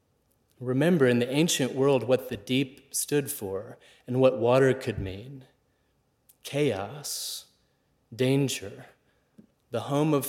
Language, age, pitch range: English, 30-49, 115-135 Hz